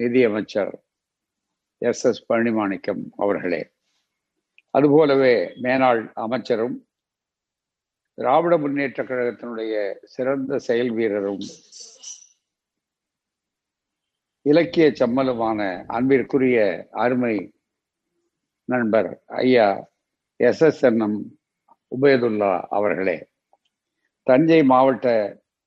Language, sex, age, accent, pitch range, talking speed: Tamil, male, 50-69, native, 115-140 Hz, 65 wpm